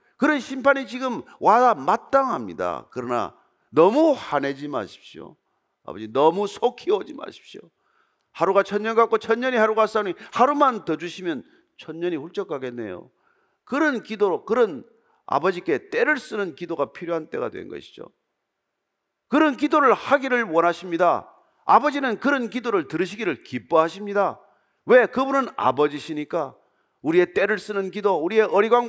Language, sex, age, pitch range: Korean, male, 40-59, 185-285 Hz